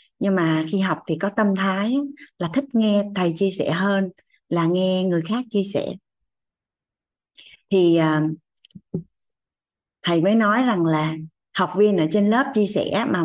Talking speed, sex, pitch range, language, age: 160 wpm, female, 160-205 Hz, Vietnamese, 20-39